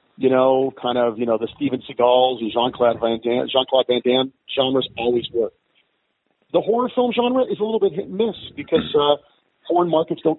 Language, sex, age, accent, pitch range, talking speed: English, male, 40-59, American, 120-160 Hz, 195 wpm